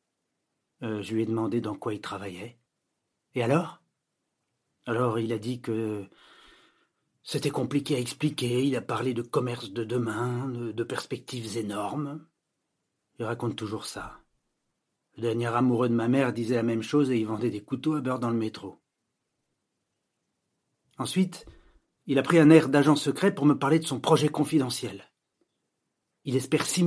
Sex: male